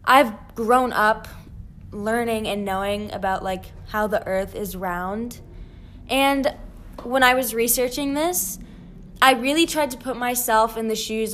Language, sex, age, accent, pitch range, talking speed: English, female, 10-29, American, 200-245 Hz, 150 wpm